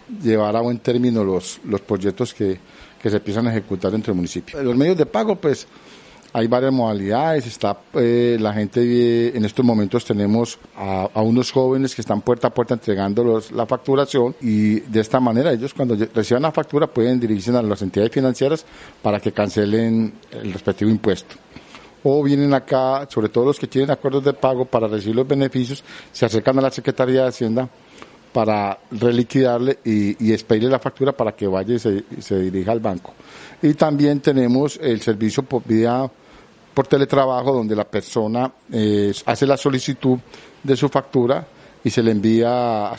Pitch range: 110-130 Hz